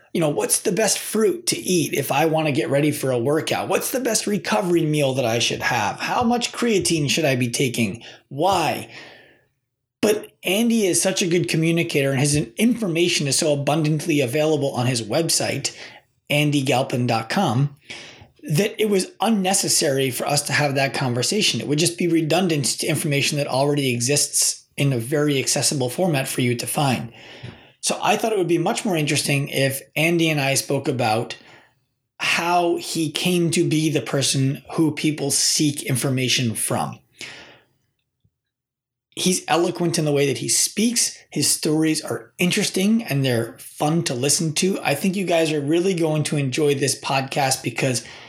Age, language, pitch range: 30-49, English, 135-170 Hz